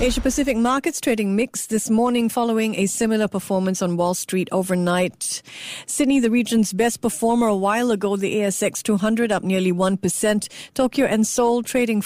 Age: 50-69